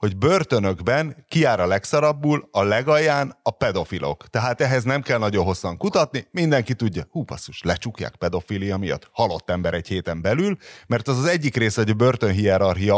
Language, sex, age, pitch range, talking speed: Hungarian, male, 30-49, 95-125 Hz, 160 wpm